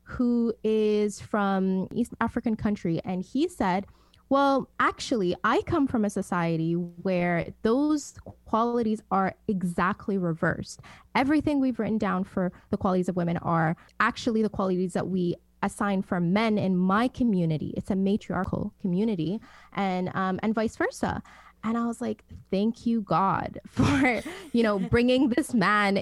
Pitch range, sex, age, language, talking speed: 185-230 Hz, female, 20-39, English, 150 wpm